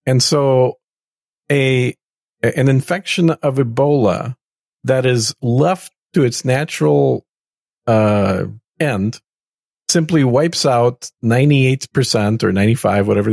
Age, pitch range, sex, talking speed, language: 50-69, 105-140 Hz, male, 100 wpm, English